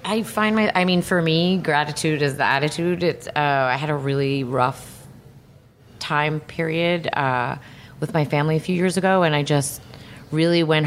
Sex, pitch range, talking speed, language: female, 130-165 Hz, 180 wpm, English